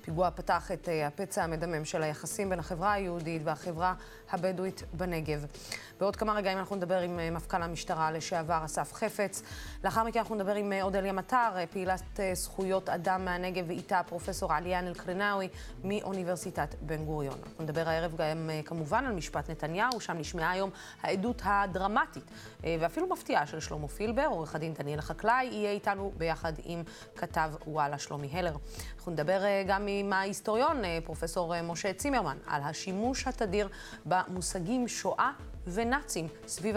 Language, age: Hebrew, 20-39